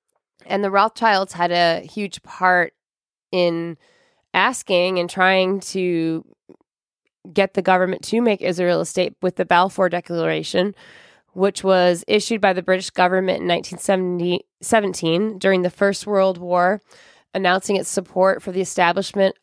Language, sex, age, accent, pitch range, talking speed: English, female, 20-39, American, 175-200 Hz, 135 wpm